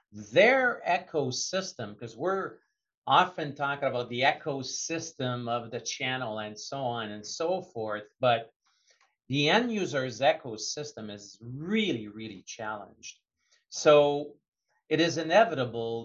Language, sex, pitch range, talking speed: English, male, 115-150 Hz, 115 wpm